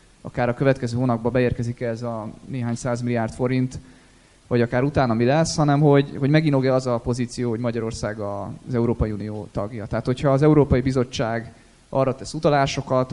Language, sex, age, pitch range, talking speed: Hungarian, male, 20-39, 115-145 Hz, 170 wpm